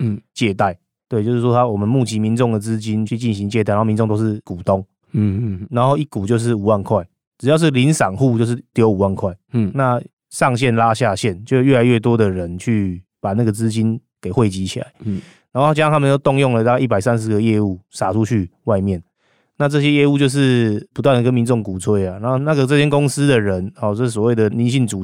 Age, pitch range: 20-39, 100-125 Hz